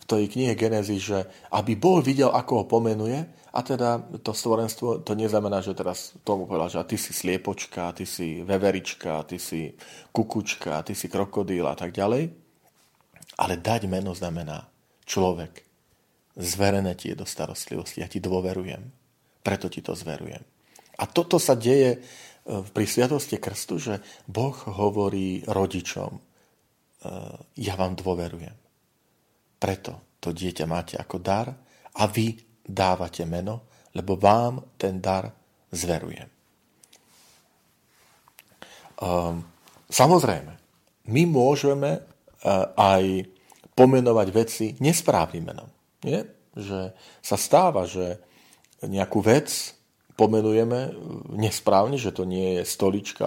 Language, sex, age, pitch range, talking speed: Slovak, male, 40-59, 90-115 Hz, 120 wpm